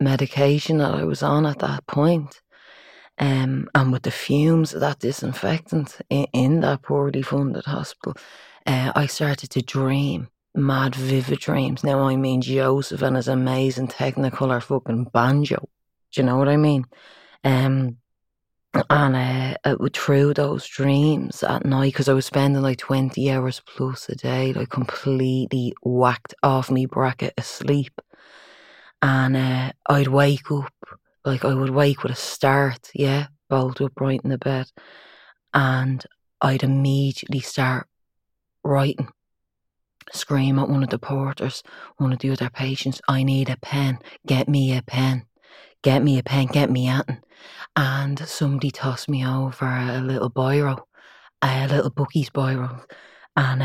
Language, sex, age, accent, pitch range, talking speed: English, female, 20-39, Irish, 130-140 Hz, 150 wpm